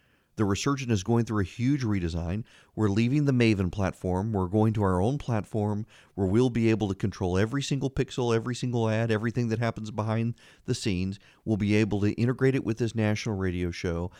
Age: 40-59